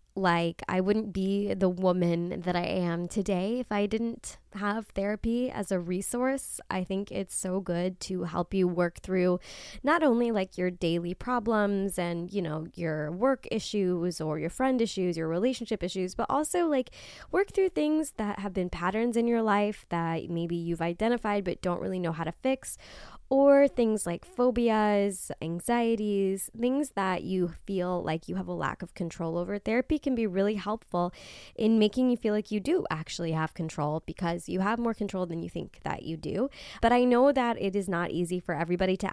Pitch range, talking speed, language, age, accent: 175-230 Hz, 190 wpm, English, 20-39, American